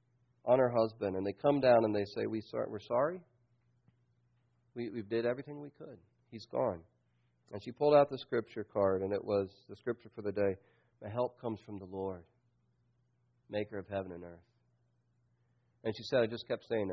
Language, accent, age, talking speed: English, American, 40-59, 195 wpm